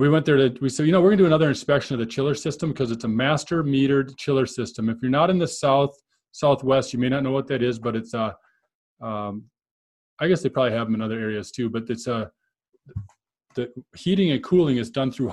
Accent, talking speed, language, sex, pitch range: American, 245 wpm, English, male, 115-140 Hz